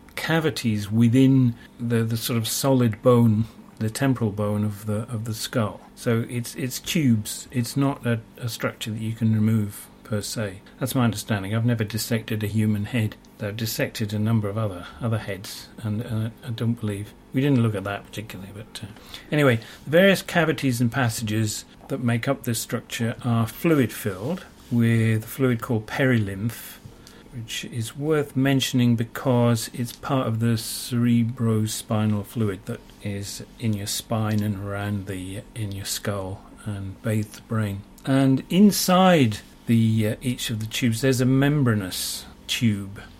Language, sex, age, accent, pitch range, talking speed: English, male, 40-59, British, 105-130 Hz, 165 wpm